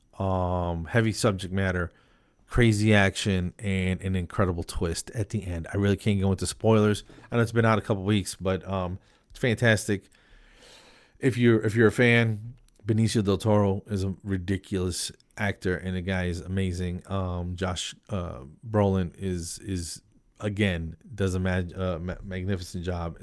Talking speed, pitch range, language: 160 wpm, 90-110 Hz, English